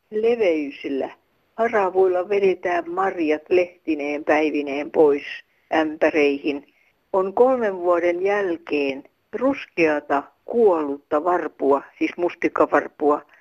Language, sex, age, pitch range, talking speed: Finnish, female, 60-79, 165-260 Hz, 75 wpm